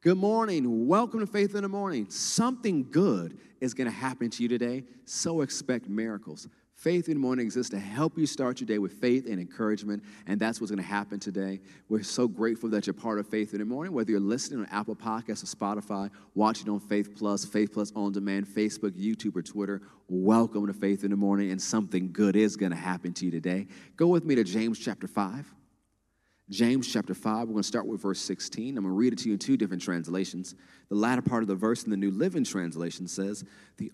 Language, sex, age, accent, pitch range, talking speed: English, male, 30-49, American, 100-125 Hz, 230 wpm